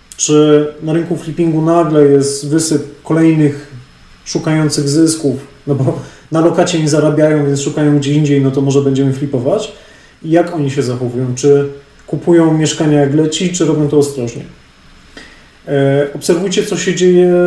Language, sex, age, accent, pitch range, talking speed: Polish, male, 30-49, native, 140-165 Hz, 150 wpm